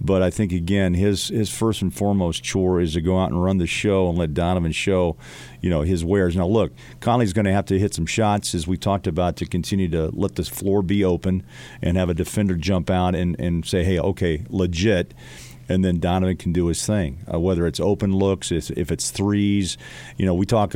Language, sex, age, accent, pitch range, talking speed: English, male, 40-59, American, 85-100 Hz, 230 wpm